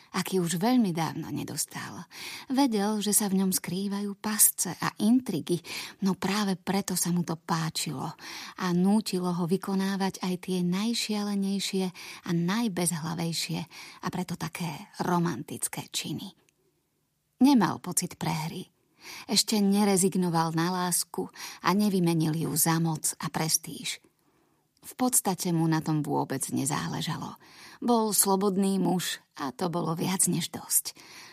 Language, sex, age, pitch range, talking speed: Slovak, female, 30-49, 165-200 Hz, 125 wpm